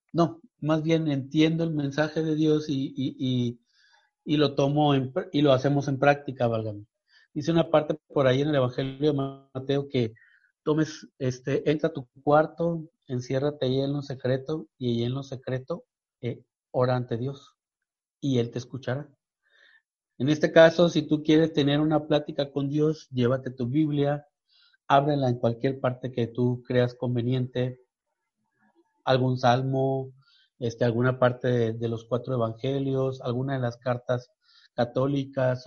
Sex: male